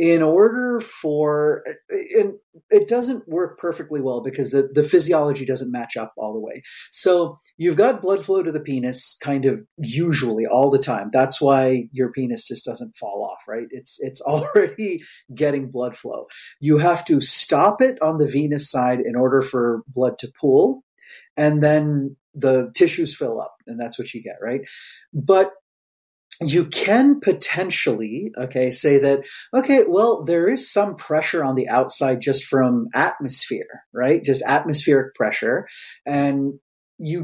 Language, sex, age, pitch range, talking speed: English, male, 30-49, 130-175 Hz, 160 wpm